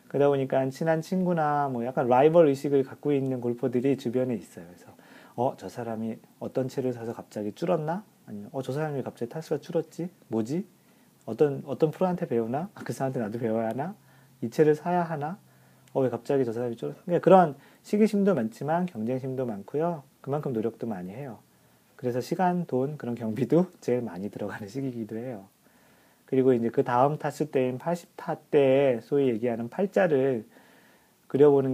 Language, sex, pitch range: Korean, male, 120-165 Hz